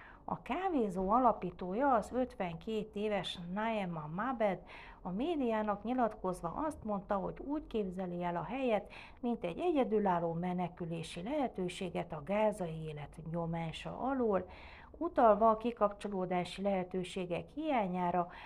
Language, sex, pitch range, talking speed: Hungarian, female, 175-225 Hz, 110 wpm